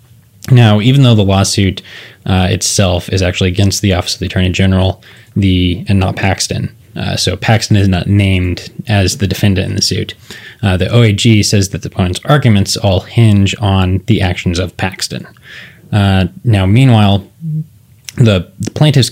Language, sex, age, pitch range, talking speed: English, male, 20-39, 95-110 Hz, 165 wpm